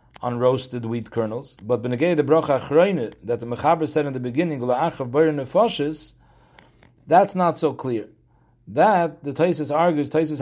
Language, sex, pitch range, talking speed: English, male, 130-160 Hz, 125 wpm